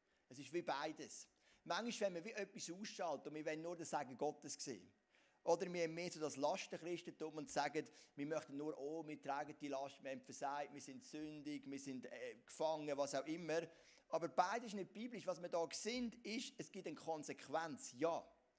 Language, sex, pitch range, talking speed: German, male, 145-185 Hz, 205 wpm